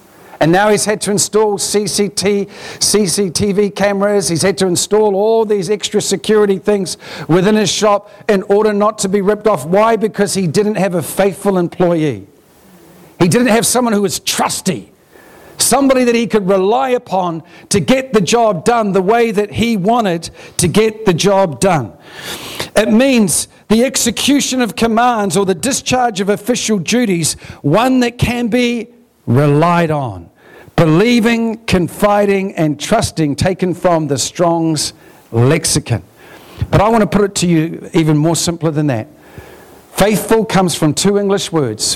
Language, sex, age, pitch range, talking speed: English, male, 50-69, 170-220 Hz, 155 wpm